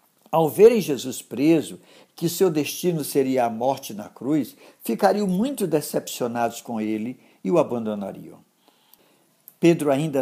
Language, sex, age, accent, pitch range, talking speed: Portuguese, male, 60-79, Brazilian, 125-170 Hz, 130 wpm